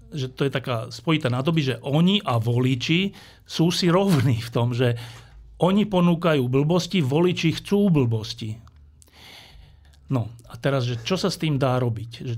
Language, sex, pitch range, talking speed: Slovak, male, 115-155 Hz, 155 wpm